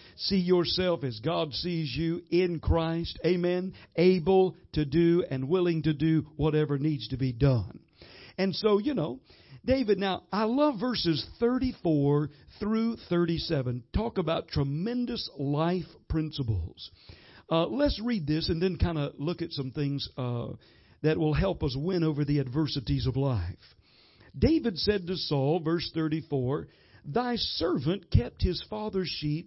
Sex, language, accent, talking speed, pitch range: male, English, American, 155 wpm, 145-190 Hz